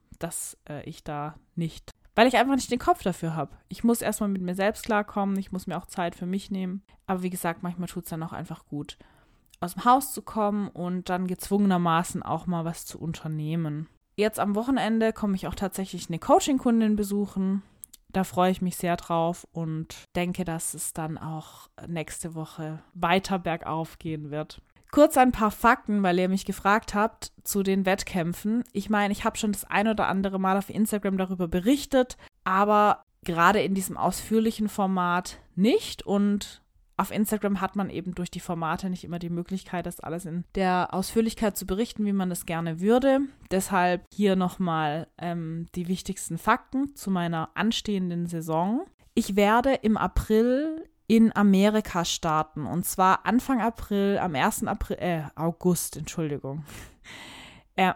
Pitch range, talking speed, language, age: 170-210 Hz, 170 wpm, German, 20-39